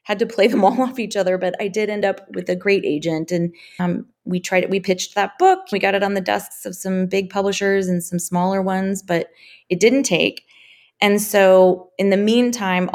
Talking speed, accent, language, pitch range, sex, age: 220 wpm, American, English, 185-210 Hz, female, 30-49